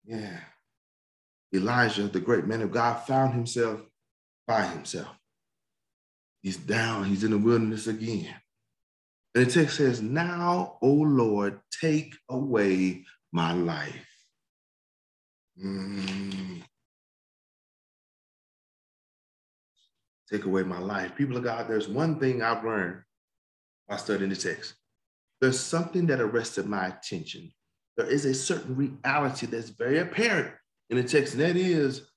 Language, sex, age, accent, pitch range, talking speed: English, male, 40-59, American, 100-140 Hz, 125 wpm